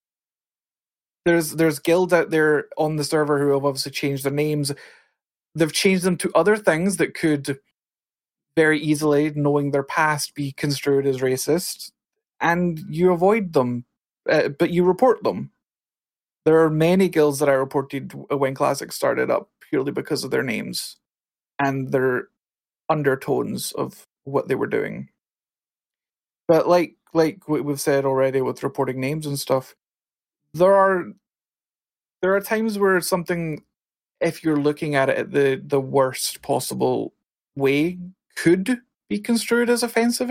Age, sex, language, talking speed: 20-39, male, English, 145 wpm